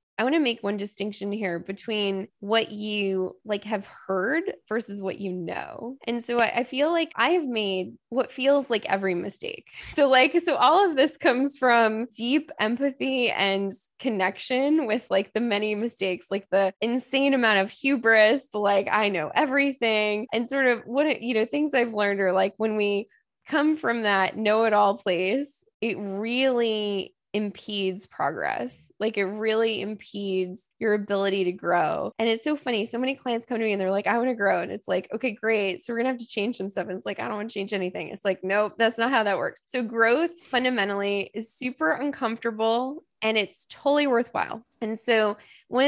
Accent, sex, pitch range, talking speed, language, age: American, female, 200-255 Hz, 190 wpm, English, 20-39